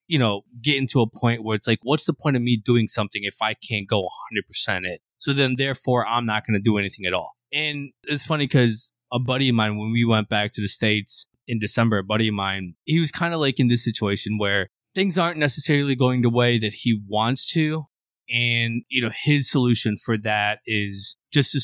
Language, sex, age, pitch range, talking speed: English, male, 20-39, 100-120 Hz, 230 wpm